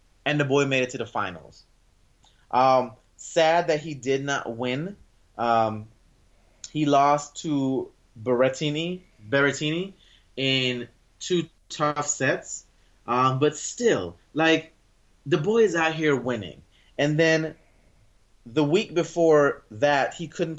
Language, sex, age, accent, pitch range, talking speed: English, male, 20-39, American, 120-160 Hz, 125 wpm